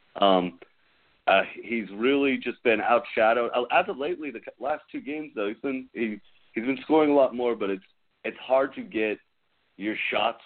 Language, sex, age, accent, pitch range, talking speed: English, male, 30-49, American, 95-115 Hz, 185 wpm